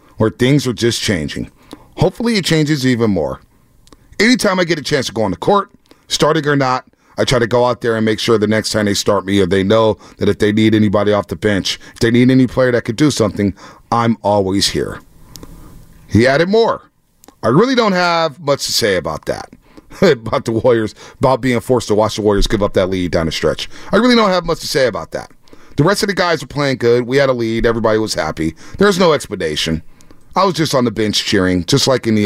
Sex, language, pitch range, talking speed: male, English, 105-150 Hz, 235 wpm